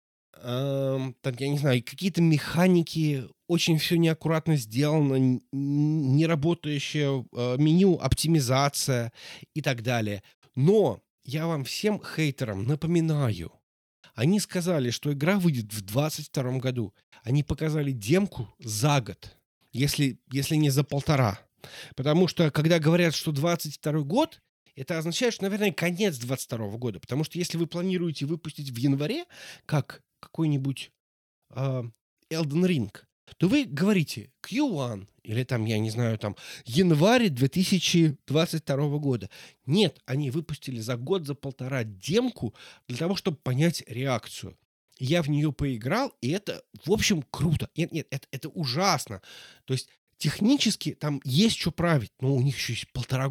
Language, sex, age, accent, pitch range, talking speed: Russian, male, 20-39, native, 130-170 Hz, 140 wpm